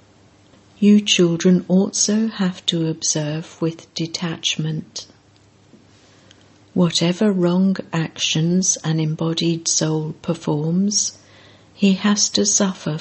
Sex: female